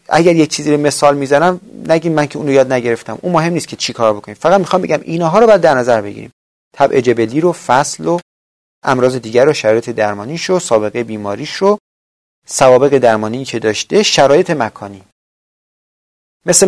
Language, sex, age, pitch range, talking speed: Persian, male, 30-49, 110-165 Hz, 175 wpm